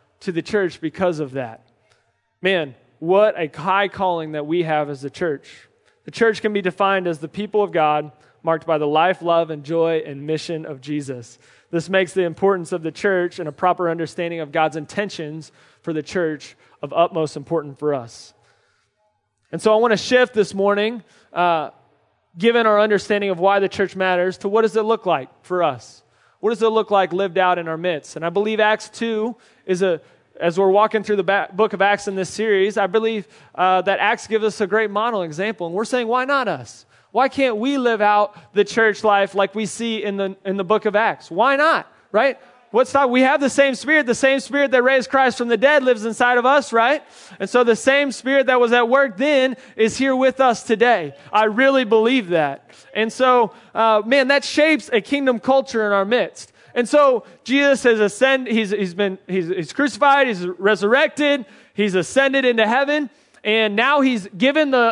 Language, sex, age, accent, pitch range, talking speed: English, male, 20-39, American, 175-240 Hz, 205 wpm